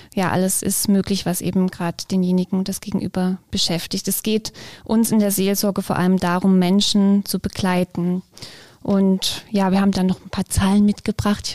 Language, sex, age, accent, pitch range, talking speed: German, female, 20-39, German, 190-210 Hz, 170 wpm